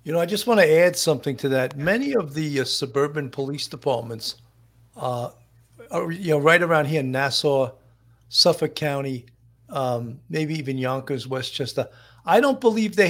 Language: English